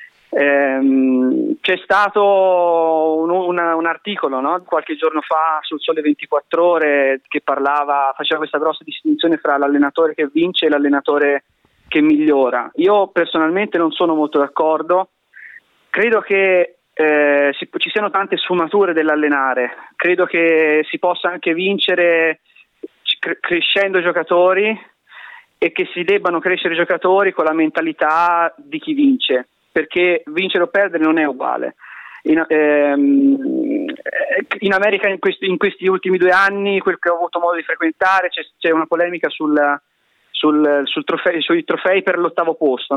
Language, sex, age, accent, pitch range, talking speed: Italian, male, 30-49, native, 150-190 Hz, 140 wpm